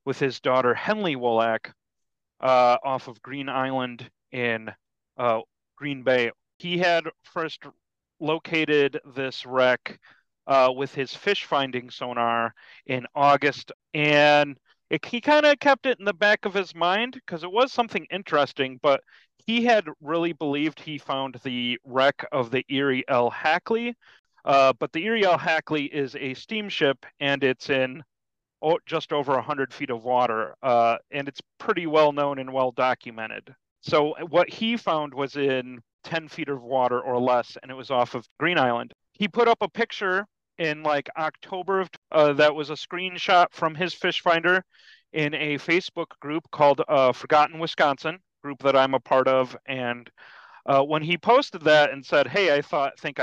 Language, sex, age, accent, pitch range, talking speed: English, male, 30-49, American, 130-165 Hz, 165 wpm